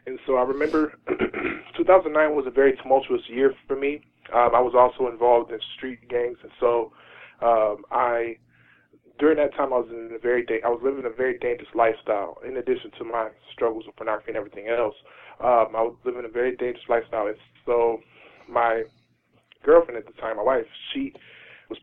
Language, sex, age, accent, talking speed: English, male, 20-39, American, 190 wpm